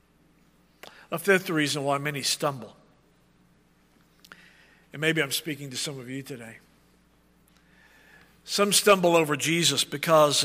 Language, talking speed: English, 115 wpm